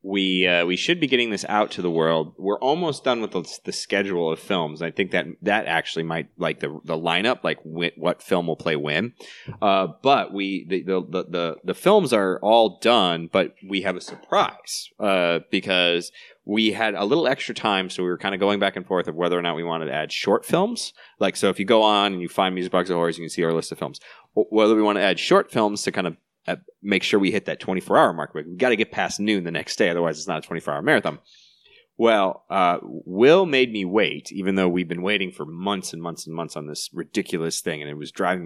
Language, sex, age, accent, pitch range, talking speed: English, male, 30-49, American, 85-105 Hz, 245 wpm